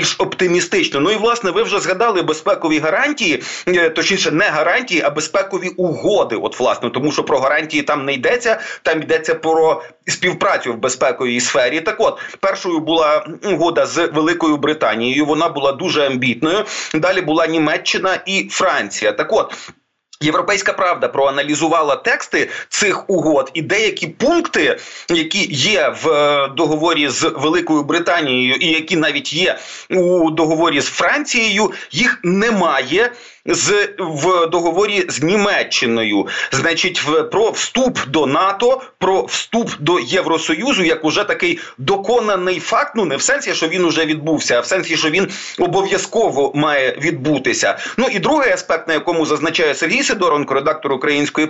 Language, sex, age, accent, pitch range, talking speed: Ukrainian, male, 30-49, native, 155-200 Hz, 145 wpm